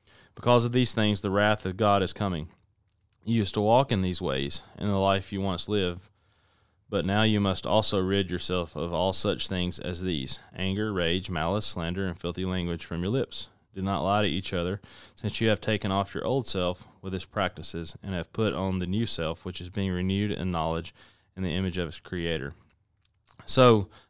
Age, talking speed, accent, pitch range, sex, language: 20-39, 205 wpm, American, 95-105 Hz, male, English